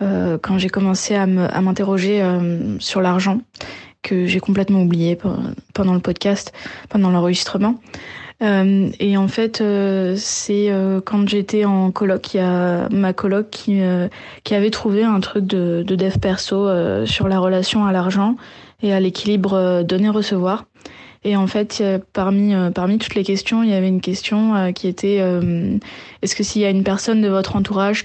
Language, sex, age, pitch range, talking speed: French, female, 20-39, 185-205 Hz, 155 wpm